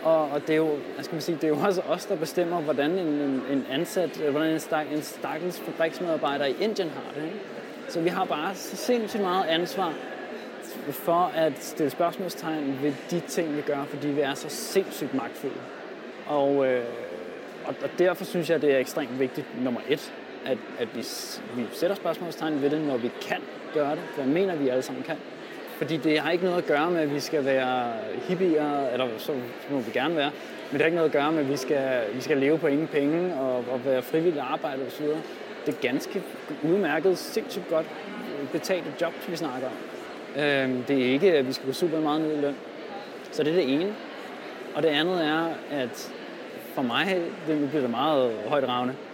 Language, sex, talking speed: Danish, male, 210 wpm